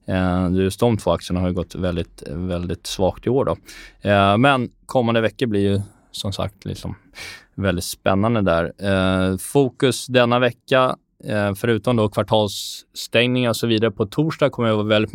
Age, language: 20-39, Swedish